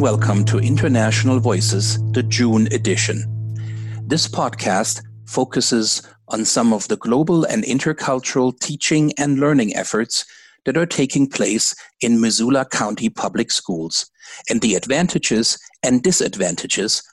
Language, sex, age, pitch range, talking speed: English, male, 60-79, 110-155 Hz, 125 wpm